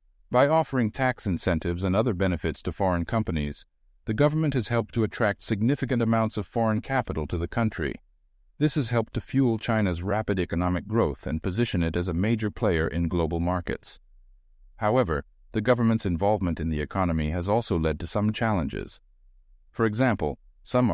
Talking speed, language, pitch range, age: 170 wpm, English, 80-105 Hz, 50-69